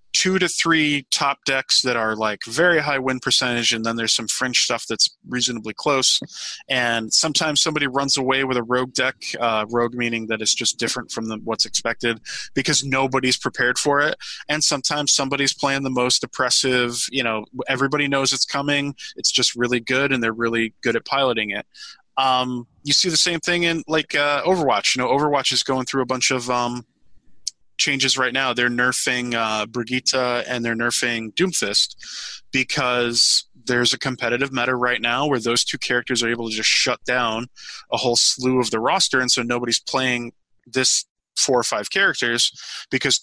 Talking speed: 185 wpm